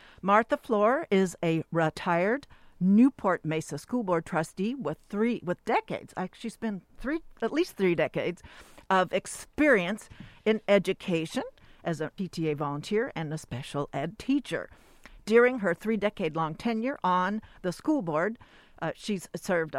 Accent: American